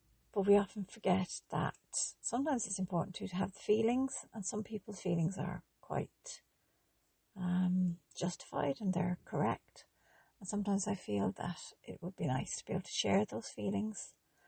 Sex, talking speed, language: female, 160 wpm, English